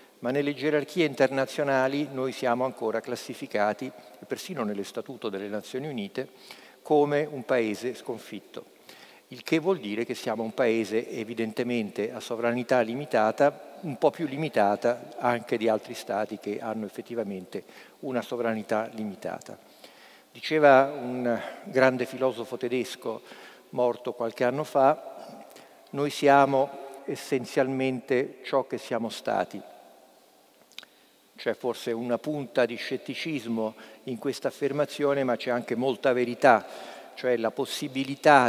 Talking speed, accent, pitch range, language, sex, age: 120 wpm, native, 115-140 Hz, Italian, male, 50-69